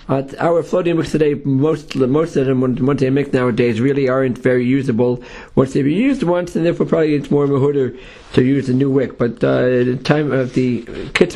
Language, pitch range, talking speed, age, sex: English, 125-155 Hz, 220 wpm, 50-69, male